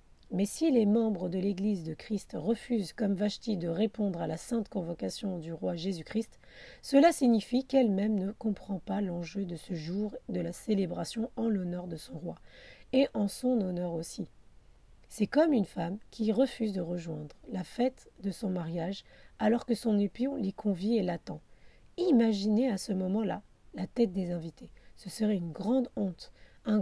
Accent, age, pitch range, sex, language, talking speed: French, 40-59, 185-230 Hz, female, French, 175 wpm